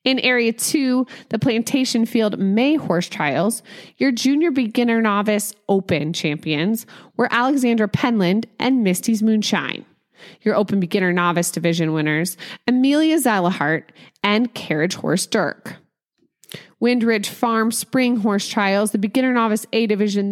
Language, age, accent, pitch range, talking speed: English, 20-39, American, 195-240 Hz, 125 wpm